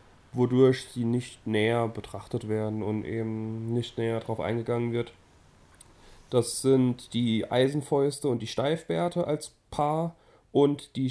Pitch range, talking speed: 115-140 Hz, 130 wpm